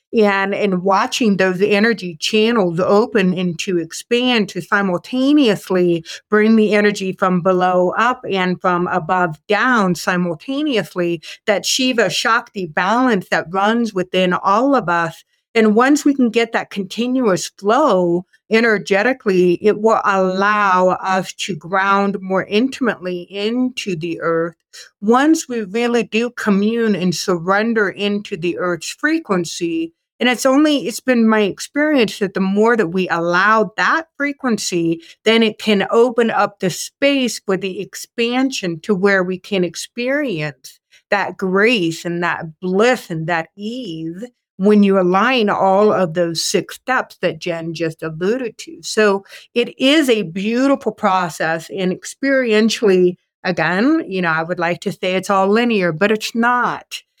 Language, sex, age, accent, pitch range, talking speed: English, female, 60-79, American, 180-230 Hz, 145 wpm